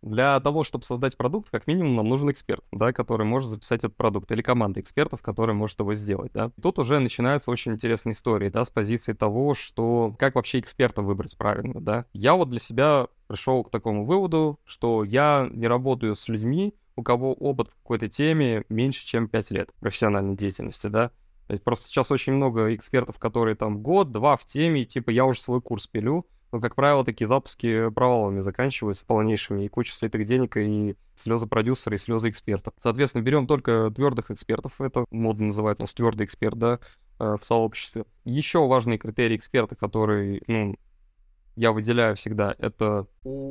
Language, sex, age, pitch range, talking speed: Russian, male, 20-39, 110-130 Hz, 175 wpm